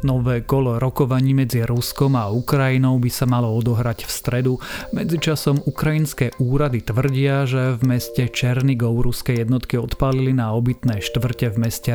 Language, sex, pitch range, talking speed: Slovak, male, 120-135 Hz, 145 wpm